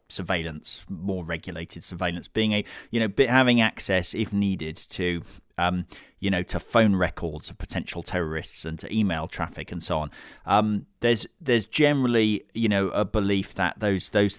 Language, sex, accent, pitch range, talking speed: English, male, British, 90-110 Hz, 165 wpm